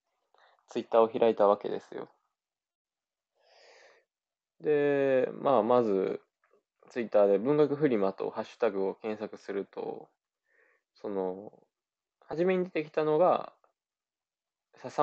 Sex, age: male, 20-39